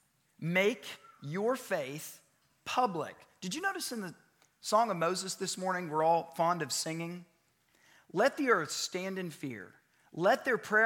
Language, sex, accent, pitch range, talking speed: English, male, American, 155-205 Hz, 150 wpm